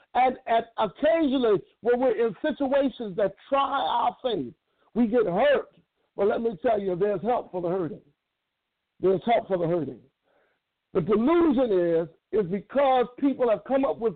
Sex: male